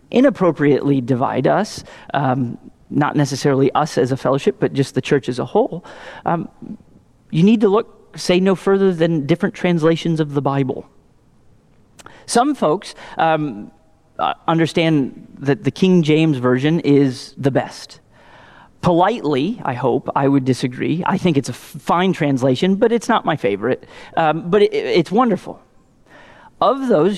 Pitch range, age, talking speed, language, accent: 140-185 Hz, 40-59, 145 wpm, English, American